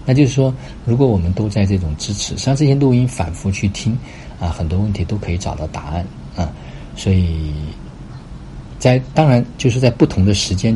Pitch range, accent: 80-100 Hz, native